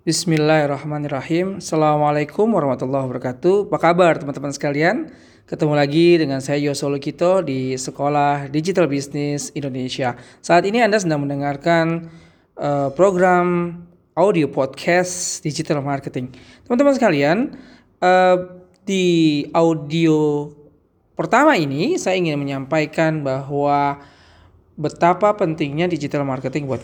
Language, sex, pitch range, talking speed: Indonesian, male, 140-180 Hz, 100 wpm